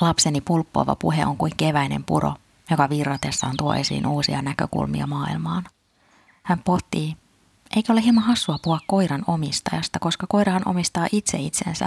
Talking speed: 140 wpm